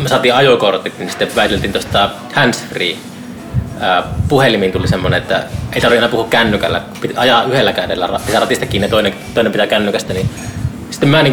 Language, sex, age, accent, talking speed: Finnish, male, 20-39, native, 190 wpm